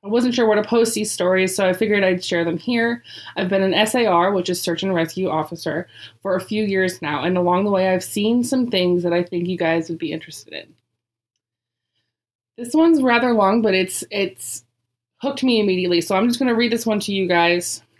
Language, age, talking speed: English, 20-39, 225 wpm